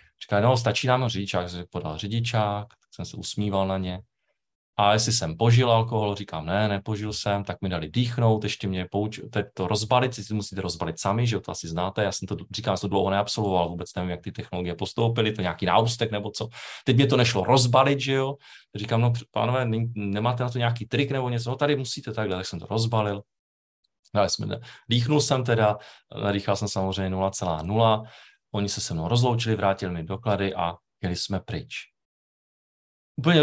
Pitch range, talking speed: 95-120 Hz, 195 wpm